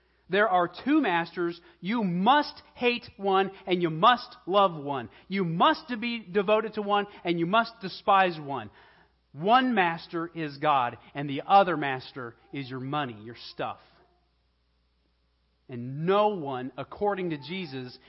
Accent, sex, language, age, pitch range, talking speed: American, male, English, 40-59, 120-190 Hz, 145 wpm